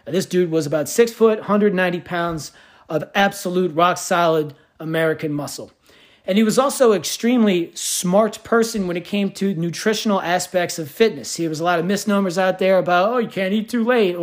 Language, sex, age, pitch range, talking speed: English, male, 40-59, 170-210 Hz, 190 wpm